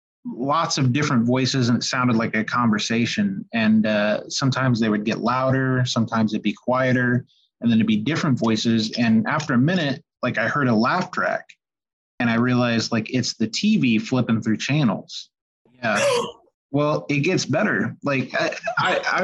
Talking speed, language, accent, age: 175 wpm, English, American, 30-49